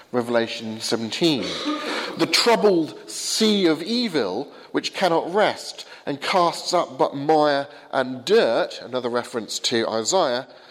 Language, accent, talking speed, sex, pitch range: English, British, 120 wpm, male, 125-185 Hz